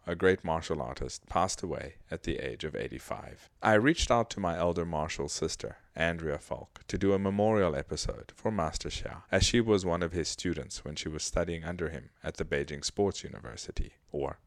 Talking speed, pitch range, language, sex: 200 wpm, 80-105 Hz, English, male